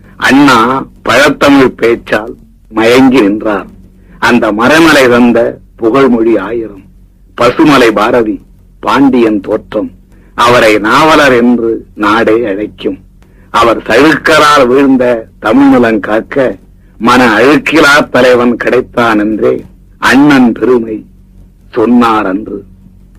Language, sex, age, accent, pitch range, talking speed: Tamil, male, 50-69, native, 105-140 Hz, 80 wpm